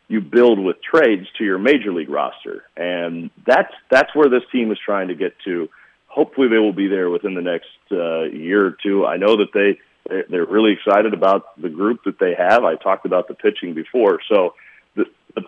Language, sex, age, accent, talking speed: English, male, 40-59, American, 215 wpm